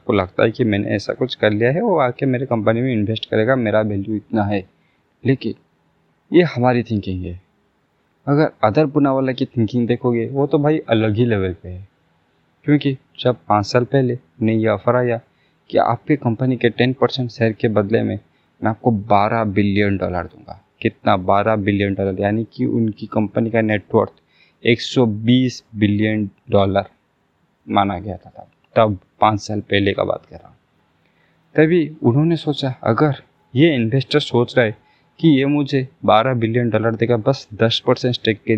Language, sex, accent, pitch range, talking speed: Hindi, male, native, 105-130 Hz, 175 wpm